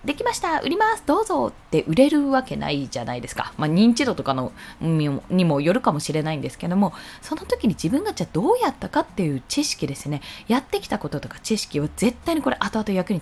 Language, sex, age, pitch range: Japanese, female, 20-39, 180-290 Hz